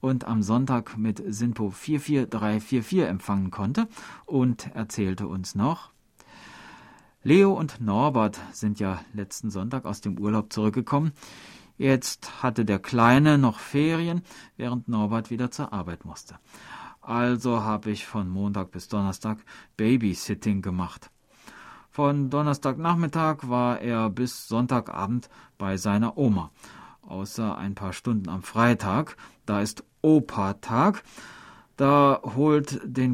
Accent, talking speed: German, 115 wpm